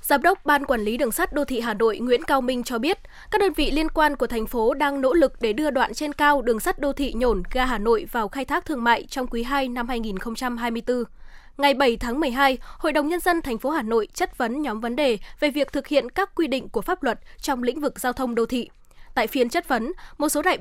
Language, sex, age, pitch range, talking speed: Vietnamese, female, 10-29, 240-300 Hz, 265 wpm